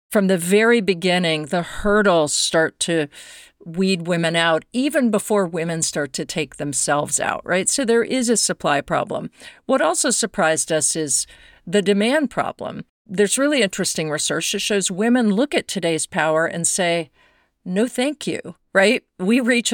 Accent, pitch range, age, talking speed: American, 165-220 Hz, 50-69, 160 wpm